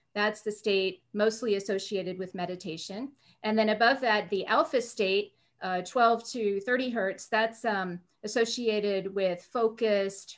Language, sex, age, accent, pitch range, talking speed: English, female, 40-59, American, 195-240 Hz, 140 wpm